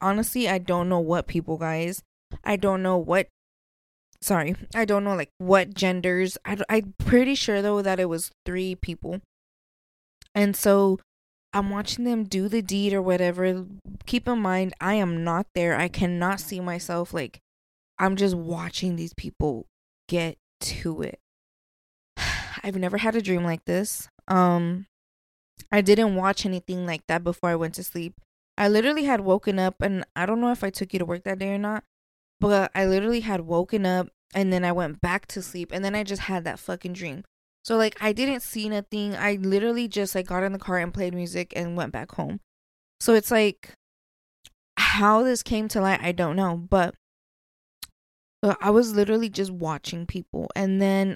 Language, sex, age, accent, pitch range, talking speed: English, female, 20-39, American, 175-205 Hz, 185 wpm